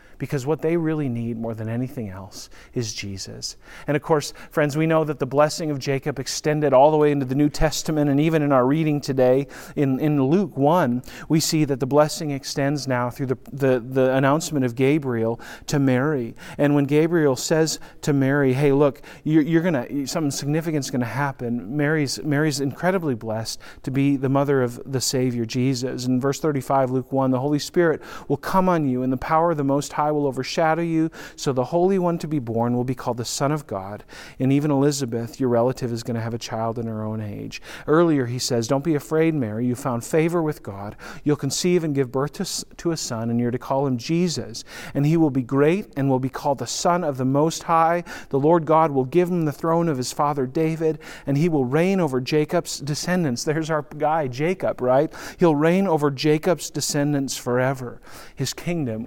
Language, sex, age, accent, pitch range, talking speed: English, male, 40-59, American, 125-155 Hz, 210 wpm